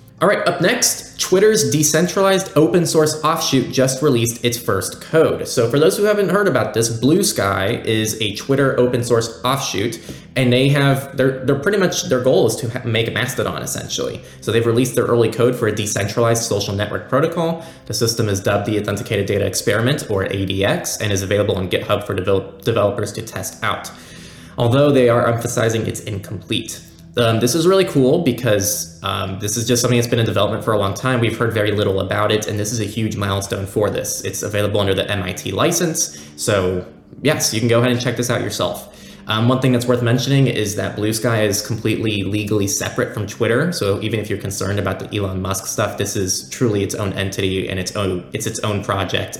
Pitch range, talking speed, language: 100-125 Hz, 210 wpm, English